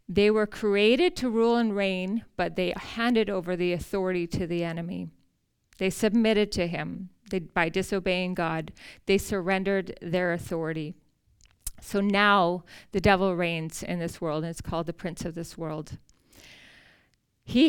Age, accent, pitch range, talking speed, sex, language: 40-59, American, 175-210 Hz, 155 wpm, female, English